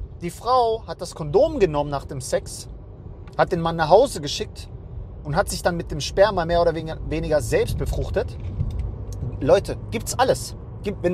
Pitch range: 115-185 Hz